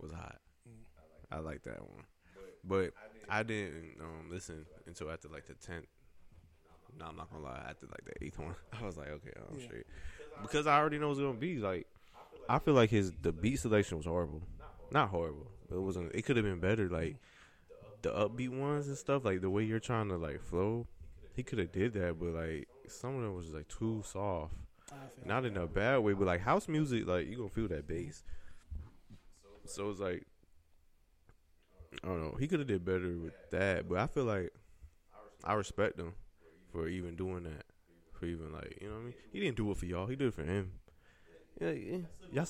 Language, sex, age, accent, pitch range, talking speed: English, male, 20-39, American, 80-125 Hz, 205 wpm